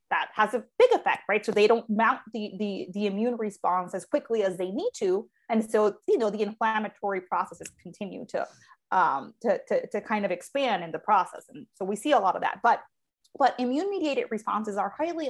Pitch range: 205-275 Hz